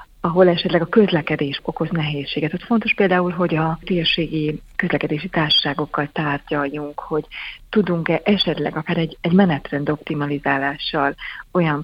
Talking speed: 120 wpm